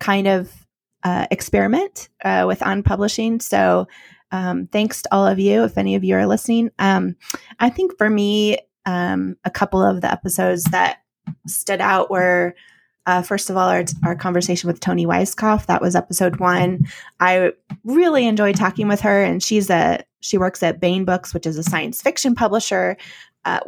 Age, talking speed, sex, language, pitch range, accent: 20-39, 180 wpm, female, English, 175-210 Hz, American